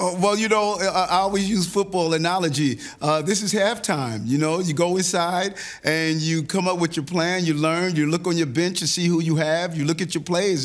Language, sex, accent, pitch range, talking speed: English, male, American, 160-195 Hz, 230 wpm